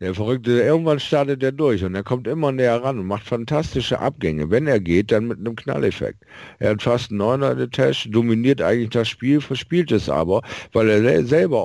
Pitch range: 105-125 Hz